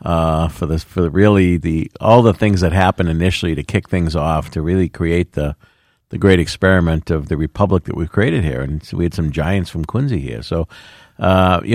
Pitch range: 85-110 Hz